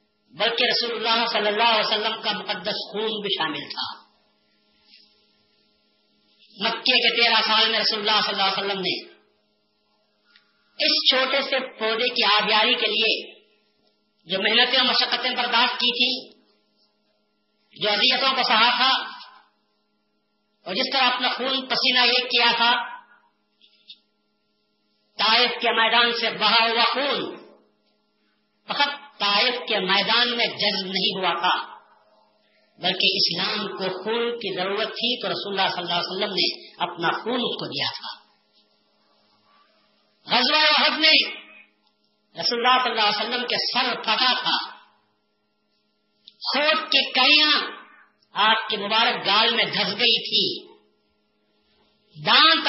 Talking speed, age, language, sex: 130 wpm, 40-59, Urdu, female